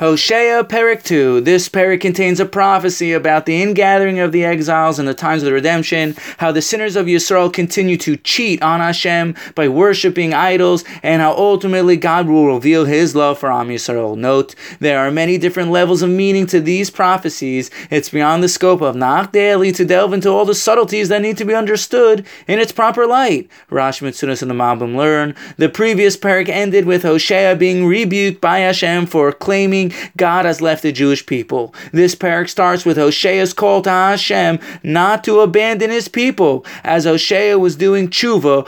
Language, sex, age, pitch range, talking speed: English, male, 20-39, 160-195 Hz, 185 wpm